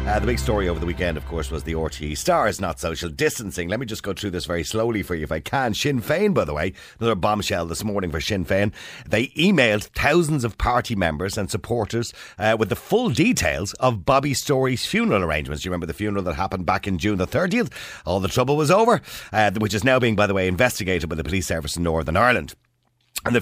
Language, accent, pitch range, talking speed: English, Irish, 85-120 Hz, 240 wpm